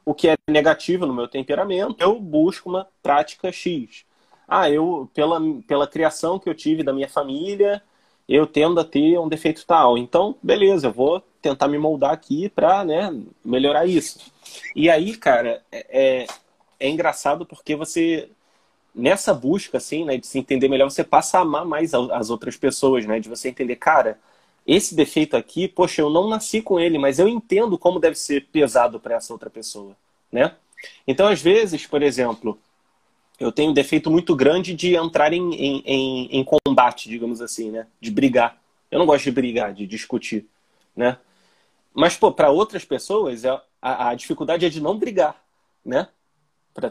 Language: Portuguese